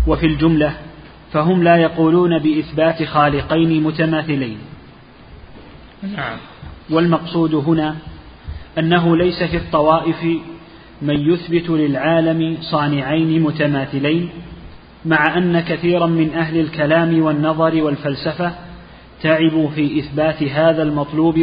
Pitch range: 150-165 Hz